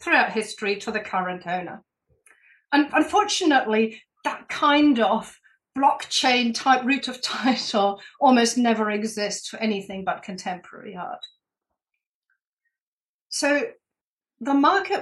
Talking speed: 110 wpm